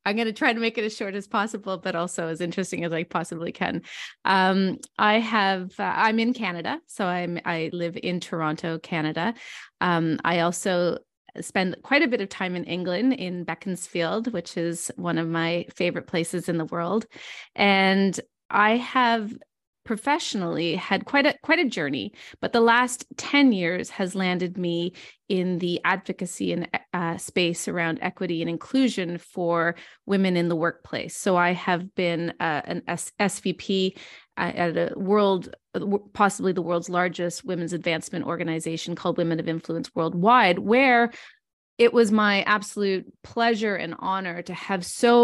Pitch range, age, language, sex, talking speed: 170-210 Hz, 20-39, English, female, 160 wpm